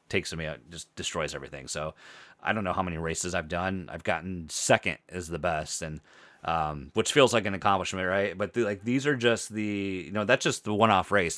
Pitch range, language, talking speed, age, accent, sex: 85-105 Hz, English, 225 wpm, 30-49, American, male